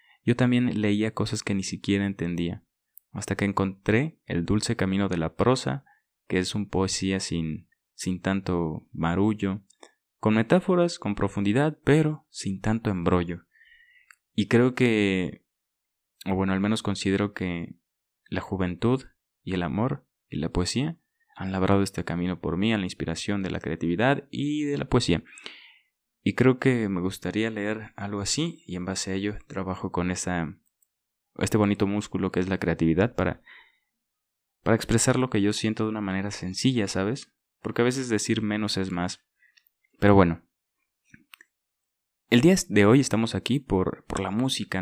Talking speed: 160 wpm